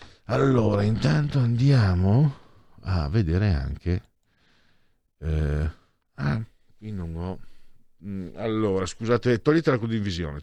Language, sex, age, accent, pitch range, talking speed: Italian, male, 50-69, native, 85-120 Hz, 90 wpm